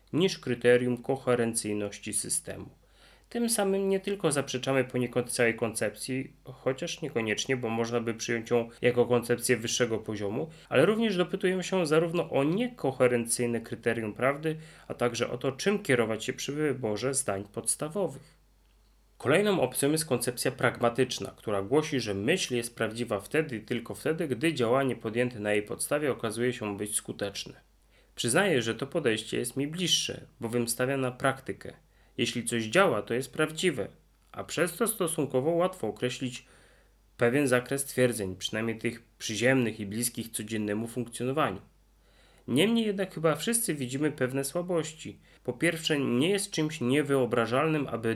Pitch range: 115-150 Hz